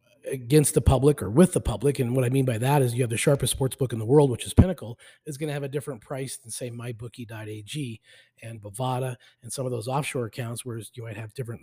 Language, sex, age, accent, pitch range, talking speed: English, male, 30-49, American, 115-145 Hz, 255 wpm